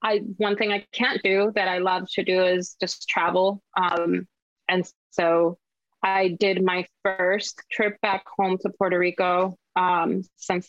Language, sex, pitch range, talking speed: English, female, 180-205 Hz, 165 wpm